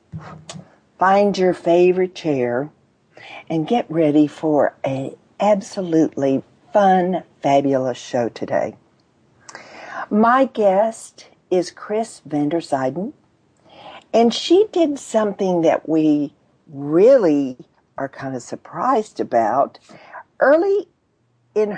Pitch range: 140-205 Hz